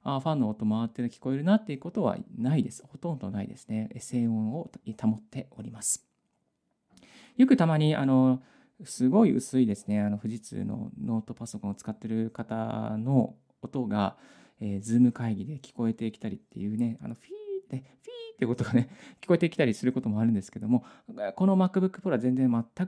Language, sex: Japanese, male